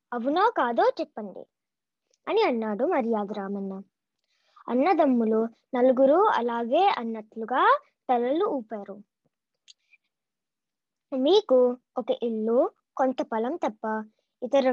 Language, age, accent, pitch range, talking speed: Telugu, 20-39, native, 230-320 Hz, 80 wpm